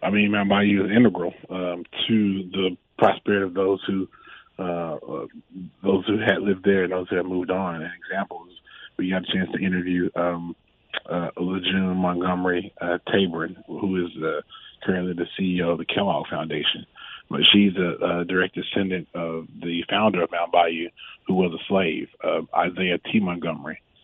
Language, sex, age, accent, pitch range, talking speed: English, male, 30-49, American, 90-100 Hz, 180 wpm